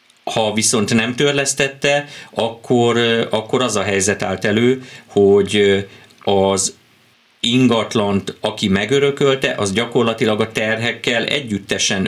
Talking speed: 105 wpm